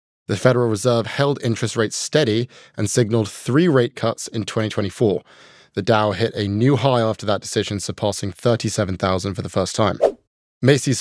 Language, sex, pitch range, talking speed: English, male, 105-125 Hz, 165 wpm